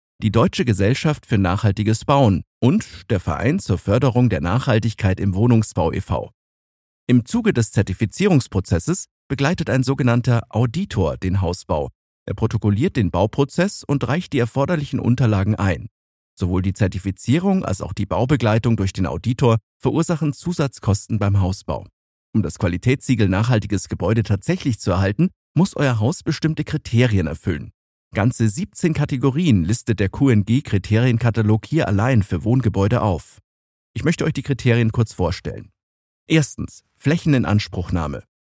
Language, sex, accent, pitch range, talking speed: German, male, German, 95-135 Hz, 130 wpm